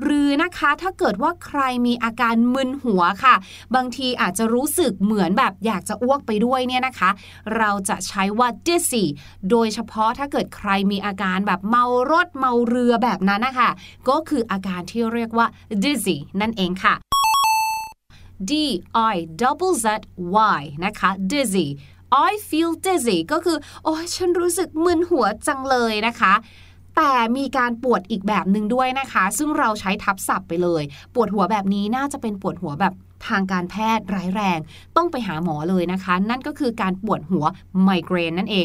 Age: 20-39